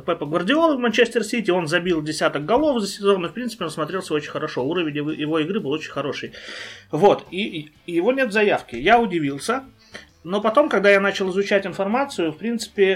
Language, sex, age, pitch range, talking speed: Russian, male, 30-49, 150-195 Hz, 185 wpm